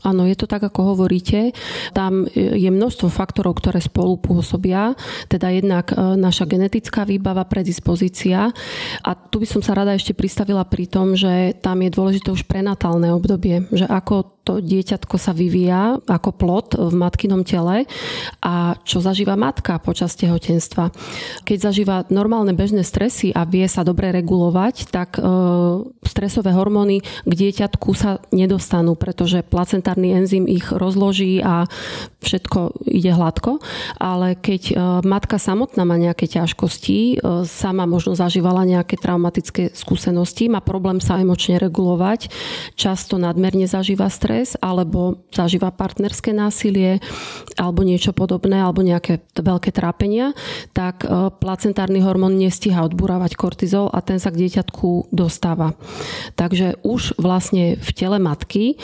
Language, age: Slovak, 30-49